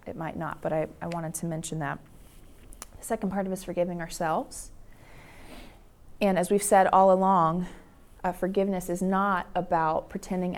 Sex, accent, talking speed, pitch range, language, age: female, American, 170 wpm, 170-200 Hz, English, 30-49